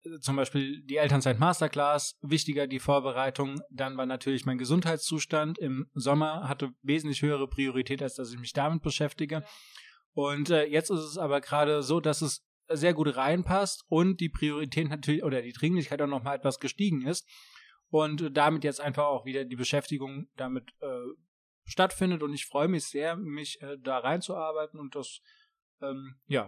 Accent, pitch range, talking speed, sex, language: German, 140-165 Hz, 170 wpm, male, German